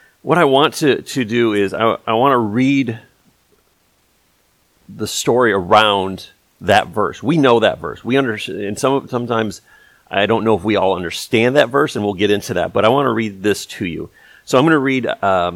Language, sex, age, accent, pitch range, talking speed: English, male, 40-59, American, 95-115 Hz, 210 wpm